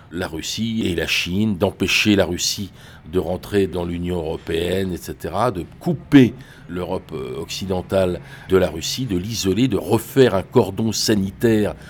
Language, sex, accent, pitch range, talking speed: French, male, French, 90-115 Hz, 140 wpm